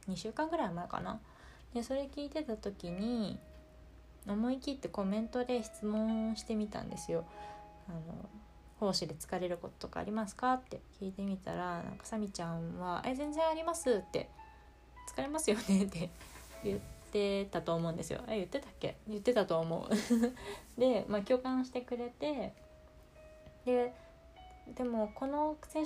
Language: Japanese